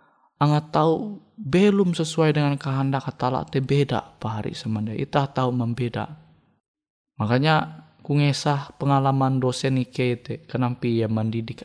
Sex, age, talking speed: male, 20-39, 120 wpm